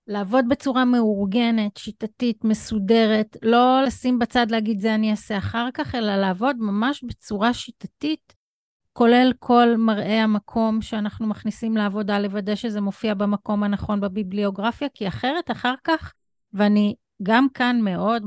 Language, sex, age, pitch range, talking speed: Hebrew, female, 30-49, 205-240 Hz, 130 wpm